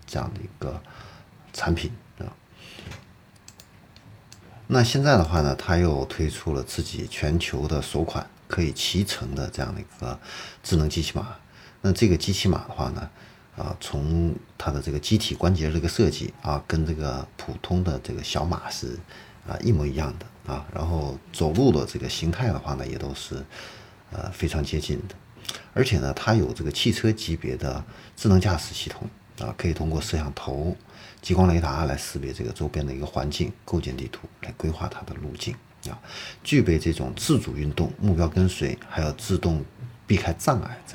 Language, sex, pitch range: Chinese, male, 75-105 Hz